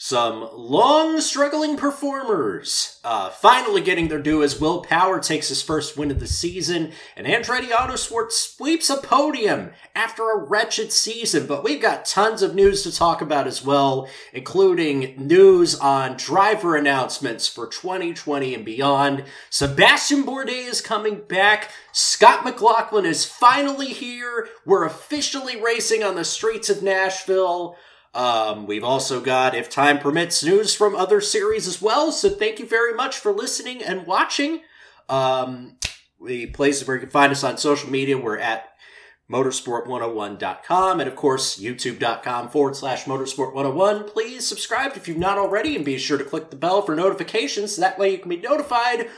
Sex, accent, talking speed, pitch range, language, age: male, American, 160 wpm, 140-235 Hz, English, 30-49